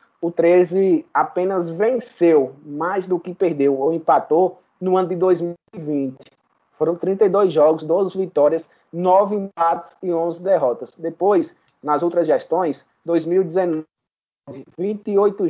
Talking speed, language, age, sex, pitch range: 115 wpm, Portuguese, 20-39, male, 150-190 Hz